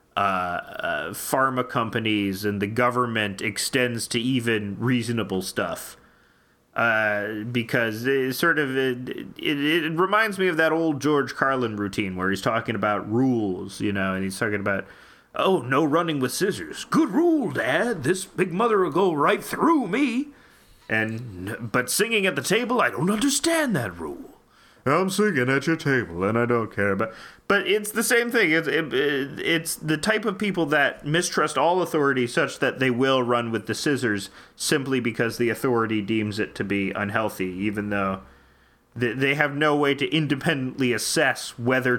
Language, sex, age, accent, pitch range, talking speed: English, male, 30-49, American, 110-160 Hz, 170 wpm